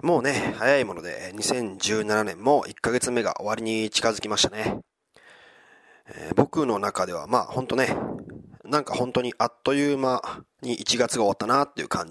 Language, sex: Japanese, male